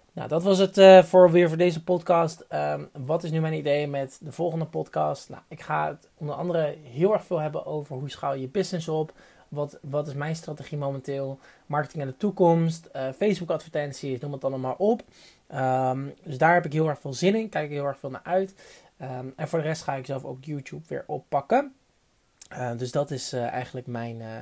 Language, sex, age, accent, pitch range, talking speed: Dutch, male, 20-39, Dutch, 140-180 Hz, 220 wpm